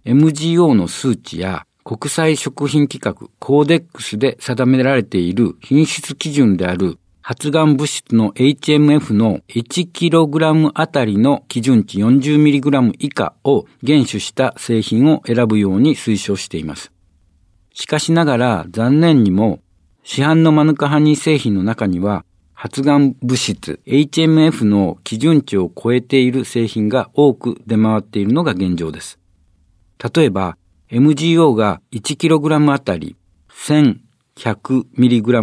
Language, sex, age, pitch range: Japanese, male, 60-79, 100-150 Hz